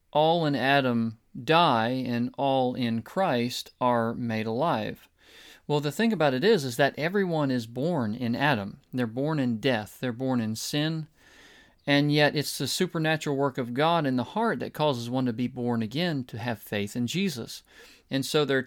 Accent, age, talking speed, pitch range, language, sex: American, 40-59, 185 wpm, 120-150 Hz, English, male